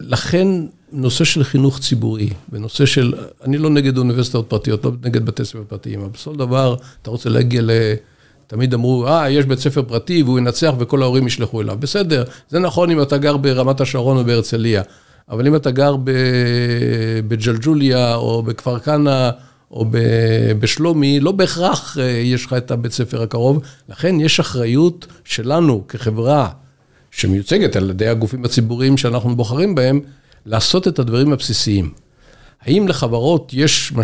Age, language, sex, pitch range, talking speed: 50-69, Hebrew, male, 115-140 Hz, 150 wpm